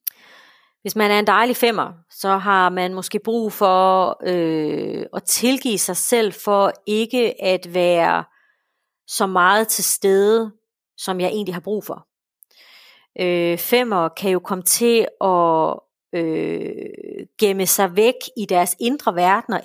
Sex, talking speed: female, 130 wpm